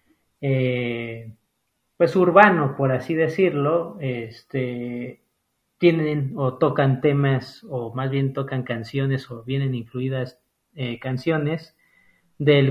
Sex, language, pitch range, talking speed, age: male, Spanish, 125-160 Hz, 105 wpm, 30-49